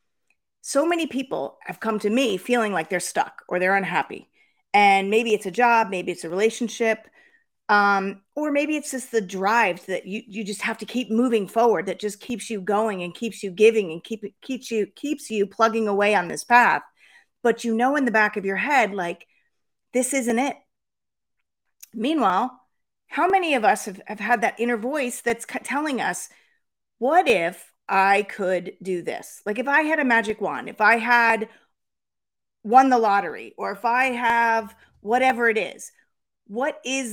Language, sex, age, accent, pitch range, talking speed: English, female, 40-59, American, 195-245 Hz, 185 wpm